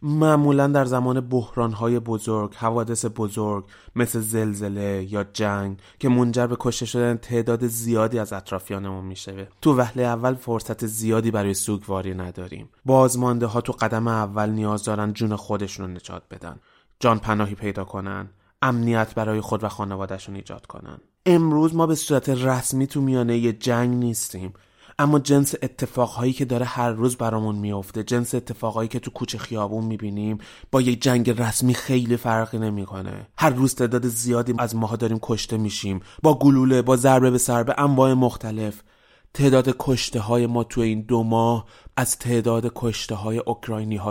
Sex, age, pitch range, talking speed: male, 20-39, 105-125 Hz, 160 wpm